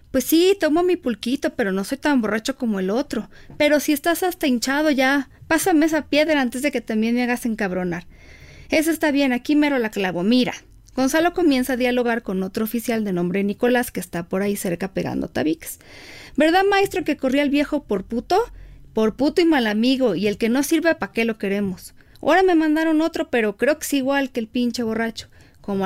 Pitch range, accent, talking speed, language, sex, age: 220-295 Hz, Mexican, 210 wpm, Spanish, female, 40-59